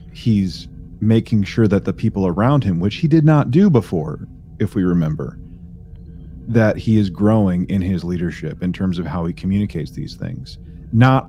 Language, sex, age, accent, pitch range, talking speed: English, male, 30-49, American, 85-110 Hz, 175 wpm